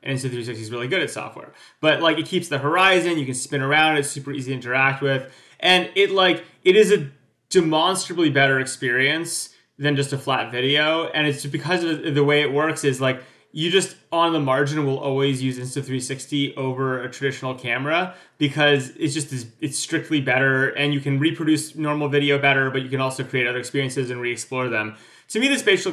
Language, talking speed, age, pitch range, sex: English, 200 wpm, 20-39, 130-150 Hz, male